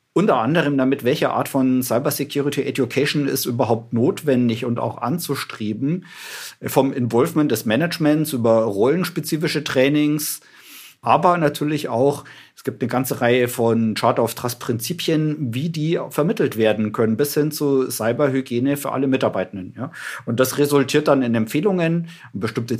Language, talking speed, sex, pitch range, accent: German, 140 wpm, male, 120-145 Hz, German